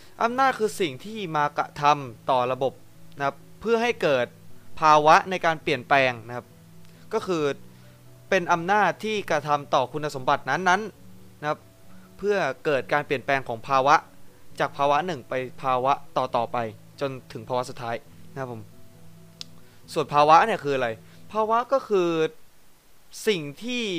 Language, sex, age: Thai, male, 20-39